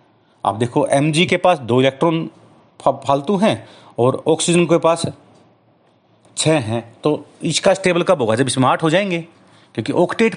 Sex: male